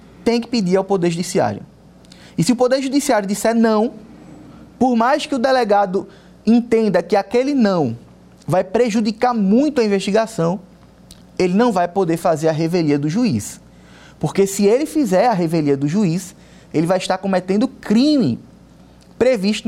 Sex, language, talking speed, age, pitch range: male, Portuguese, 150 wpm, 20-39, 160-220 Hz